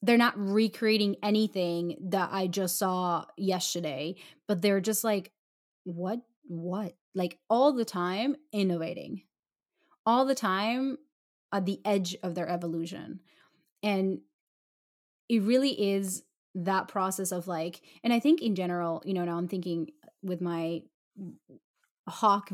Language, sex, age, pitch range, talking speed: English, female, 20-39, 180-215 Hz, 135 wpm